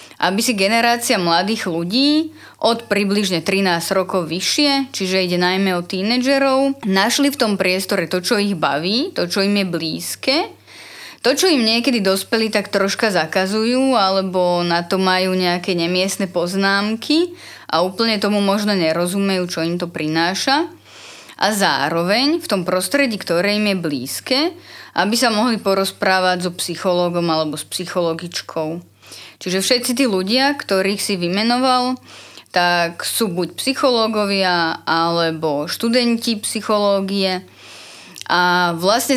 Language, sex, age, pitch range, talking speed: Slovak, female, 20-39, 180-225 Hz, 130 wpm